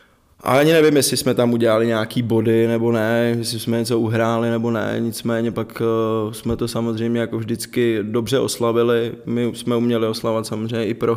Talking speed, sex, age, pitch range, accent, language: 175 wpm, male, 20-39, 110-115 Hz, native, Czech